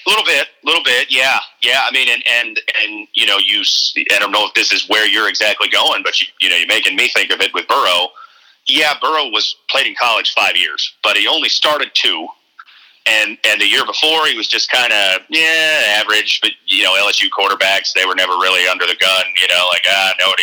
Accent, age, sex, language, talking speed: American, 40-59, male, English, 235 wpm